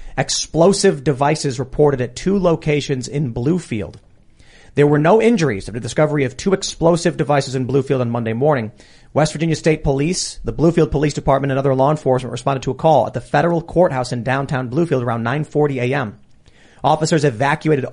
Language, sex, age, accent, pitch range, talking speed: English, male, 30-49, American, 125-160 Hz, 175 wpm